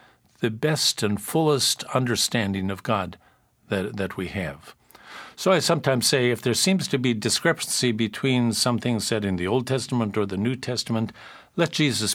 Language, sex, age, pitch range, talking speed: English, male, 50-69, 105-130 Hz, 170 wpm